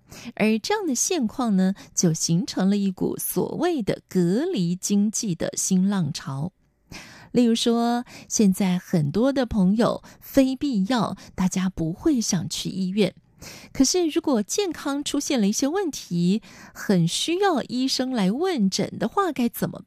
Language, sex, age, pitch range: Chinese, female, 20-39, 185-265 Hz